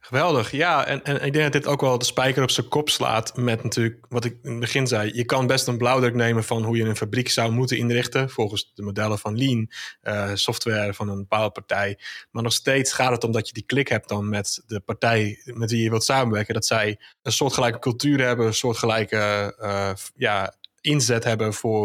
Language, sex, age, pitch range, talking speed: Dutch, male, 20-39, 105-120 Hz, 225 wpm